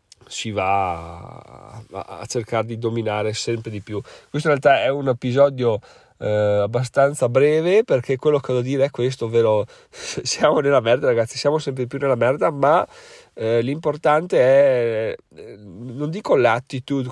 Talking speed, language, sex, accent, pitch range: 150 wpm, Italian, male, native, 110-140 Hz